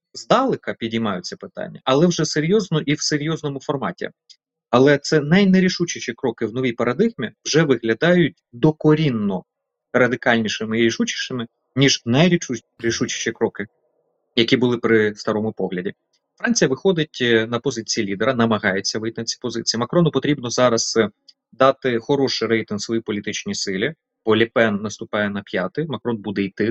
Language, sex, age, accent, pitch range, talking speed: Ukrainian, male, 30-49, native, 110-150 Hz, 130 wpm